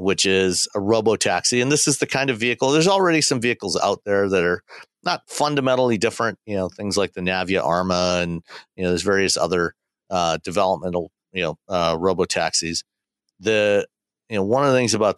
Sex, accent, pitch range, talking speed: male, American, 95-110 Hz, 195 wpm